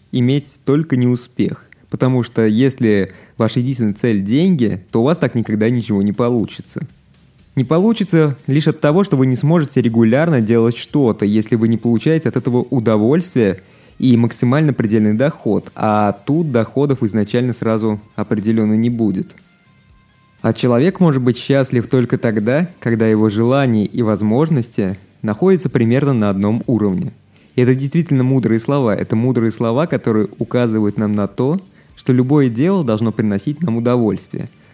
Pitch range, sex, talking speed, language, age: 110-135 Hz, male, 150 wpm, Russian, 20-39